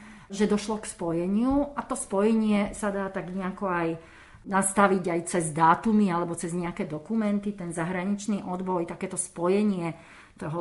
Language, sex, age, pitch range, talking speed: Slovak, female, 40-59, 165-195 Hz, 145 wpm